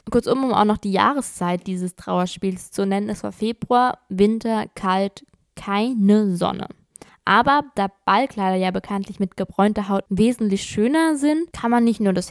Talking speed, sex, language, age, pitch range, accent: 160 wpm, female, German, 20-39, 185-225 Hz, German